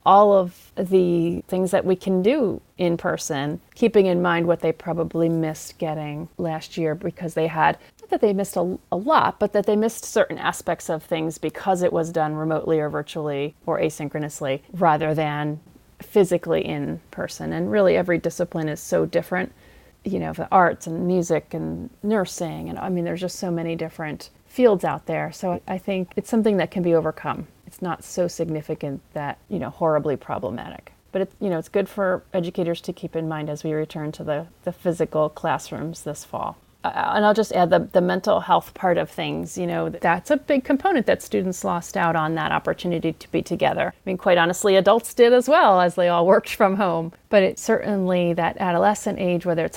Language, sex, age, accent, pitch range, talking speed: English, female, 30-49, American, 160-200 Hz, 200 wpm